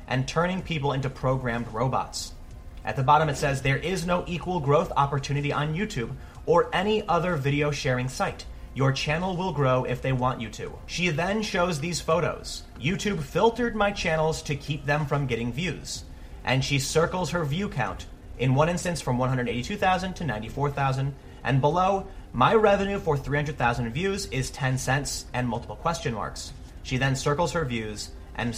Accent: American